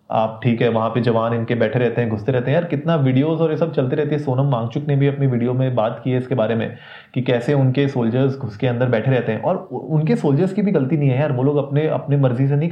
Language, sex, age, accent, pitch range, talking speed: Hindi, male, 30-49, native, 125-145 Hz, 285 wpm